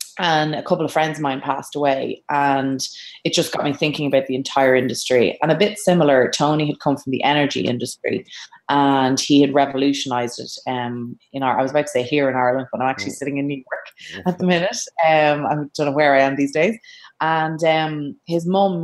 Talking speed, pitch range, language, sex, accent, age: 220 wpm, 130-150 Hz, English, female, Irish, 20-39